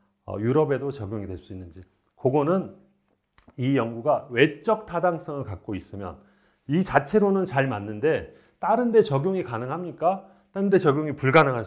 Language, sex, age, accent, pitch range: Korean, male, 40-59, native, 115-180 Hz